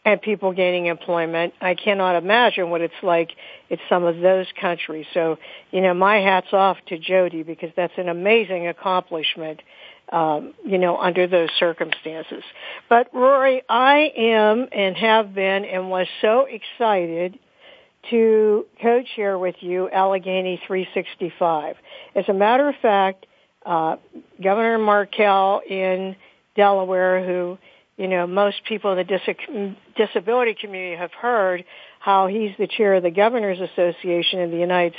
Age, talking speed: 60-79, 140 wpm